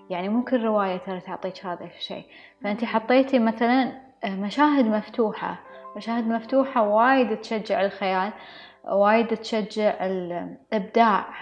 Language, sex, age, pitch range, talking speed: English, female, 20-39, 195-240 Hz, 100 wpm